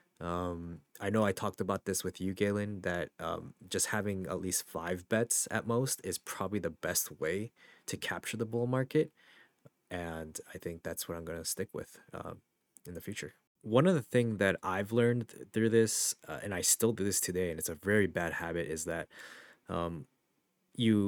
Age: 20-39